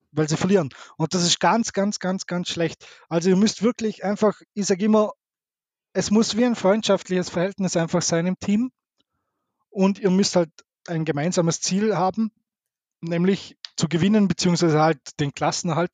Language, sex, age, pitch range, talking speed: German, male, 20-39, 160-195 Hz, 165 wpm